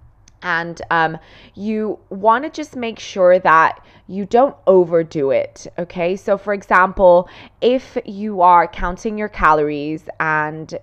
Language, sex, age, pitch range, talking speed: English, female, 20-39, 165-210 Hz, 135 wpm